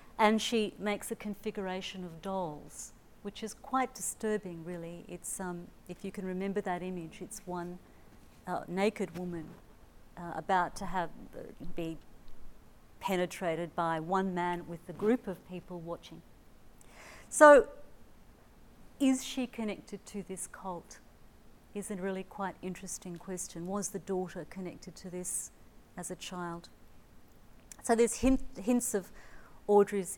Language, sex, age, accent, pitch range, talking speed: English, female, 50-69, Australian, 175-210 Hz, 135 wpm